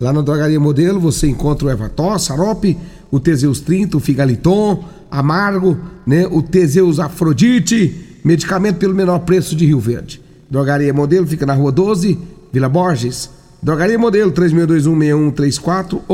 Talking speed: 140 wpm